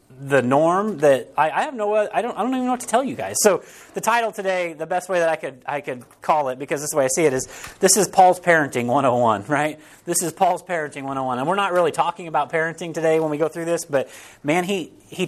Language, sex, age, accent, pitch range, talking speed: English, male, 30-49, American, 135-195 Hz, 265 wpm